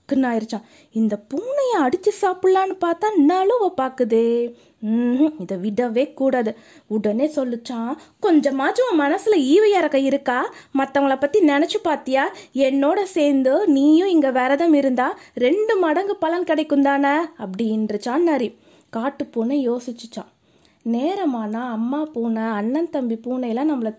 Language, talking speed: Tamil, 50 wpm